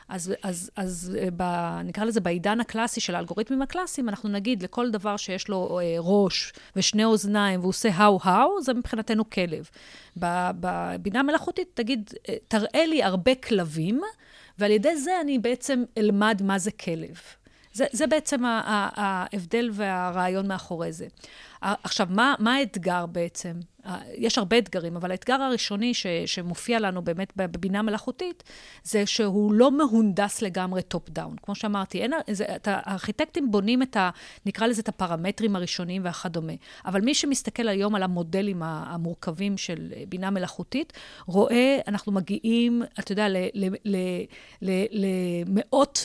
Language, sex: Hebrew, female